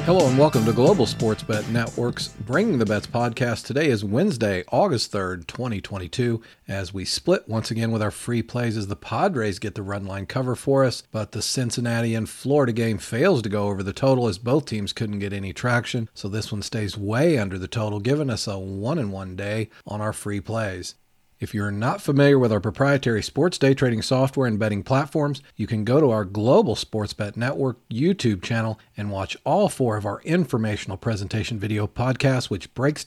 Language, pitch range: English, 110-135 Hz